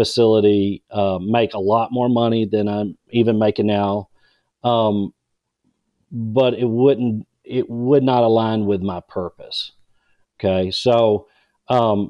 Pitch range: 110-135 Hz